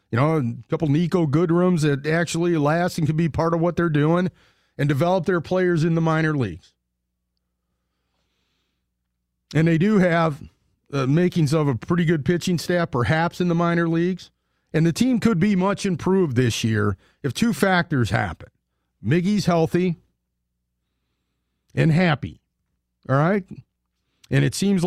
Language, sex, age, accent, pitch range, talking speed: English, male, 40-59, American, 105-170 Hz, 155 wpm